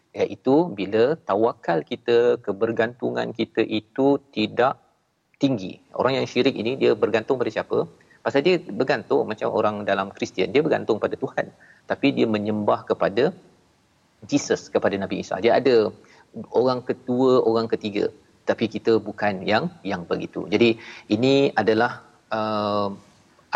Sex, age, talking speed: male, 40-59, 130 wpm